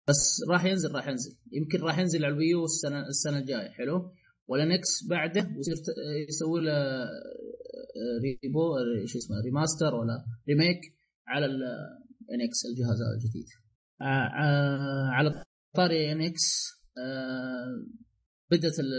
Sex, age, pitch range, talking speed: male, 20-39, 135-165 Hz, 105 wpm